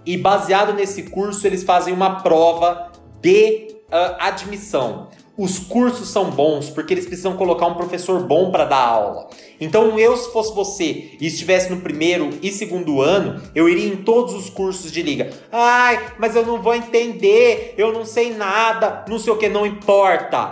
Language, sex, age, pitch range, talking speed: Portuguese, male, 30-49, 185-215 Hz, 180 wpm